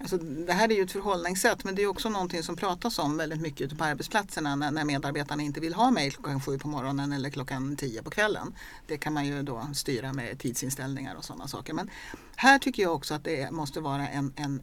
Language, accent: Swedish, native